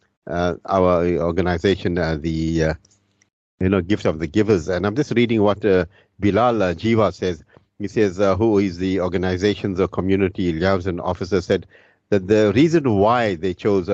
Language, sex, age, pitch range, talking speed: English, male, 50-69, 95-115 Hz, 170 wpm